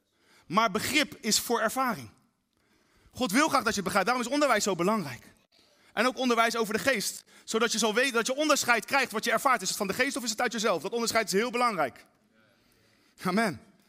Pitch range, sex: 180-250 Hz, male